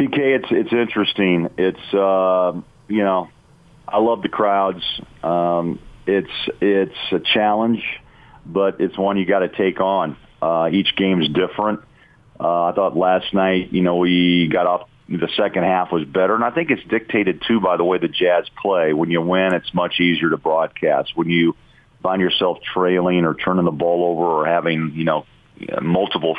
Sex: male